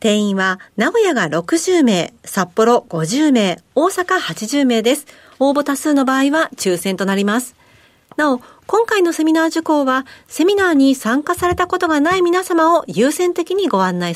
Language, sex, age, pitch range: Japanese, female, 50-69, 200-315 Hz